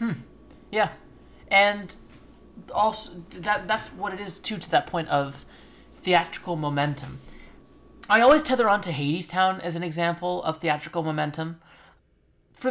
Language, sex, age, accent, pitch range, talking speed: English, male, 30-49, American, 150-195 Hz, 130 wpm